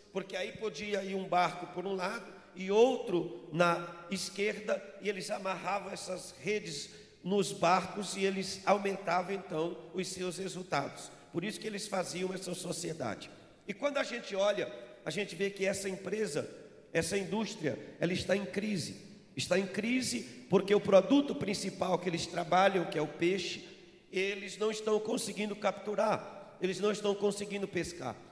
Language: Portuguese